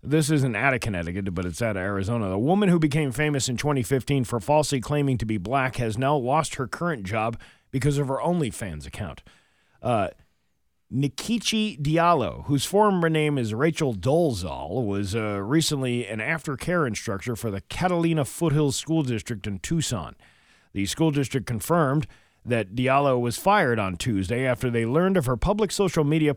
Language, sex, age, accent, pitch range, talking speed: English, male, 40-59, American, 105-145 Hz, 170 wpm